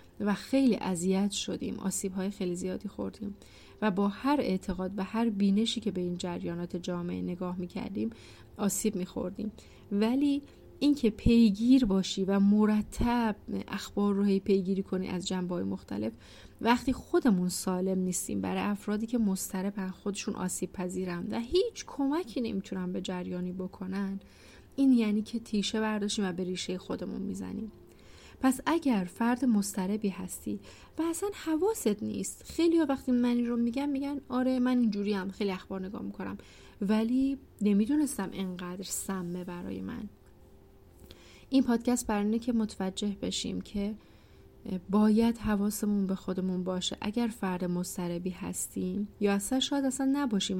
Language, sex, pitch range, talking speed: Persian, female, 185-230 Hz, 140 wpm